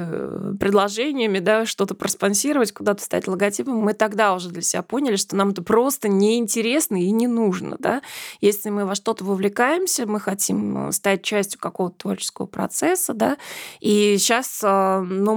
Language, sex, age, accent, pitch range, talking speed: Russian, female, 20-39, native, 185-215 Hz, 150 wpm